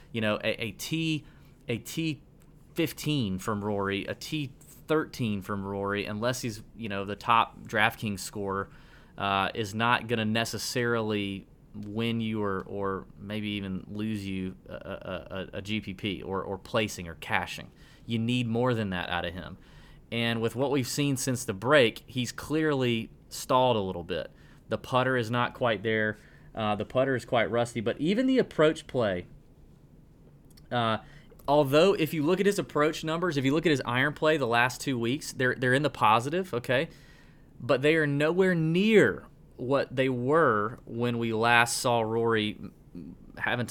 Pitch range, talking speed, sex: 110-145 Hz, 170 wpm, male